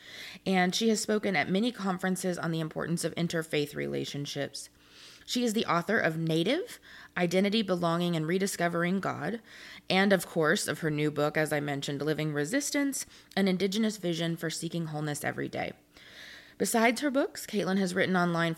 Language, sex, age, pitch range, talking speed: English, female, 20-39, 155-215 Hz, 165 wpm